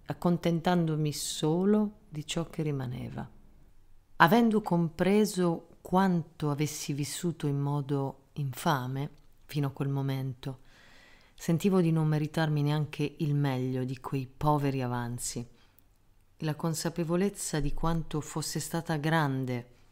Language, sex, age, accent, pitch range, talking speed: Italian, female, 40-59, native, 110-155 Hz, 110 wpm